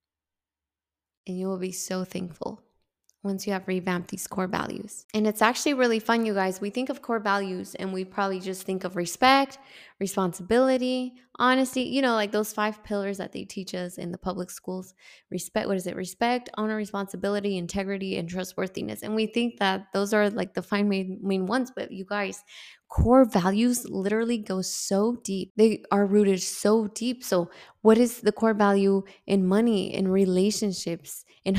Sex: female